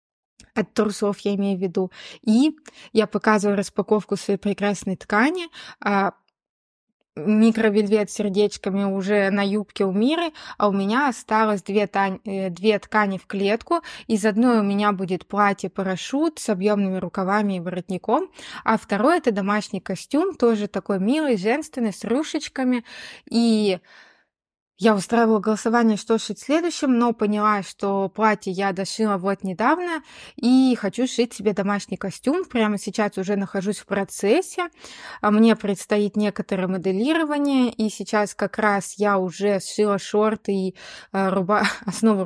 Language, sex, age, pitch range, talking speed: Russian, female, 20-39, 200-235 Hz, 135 wpm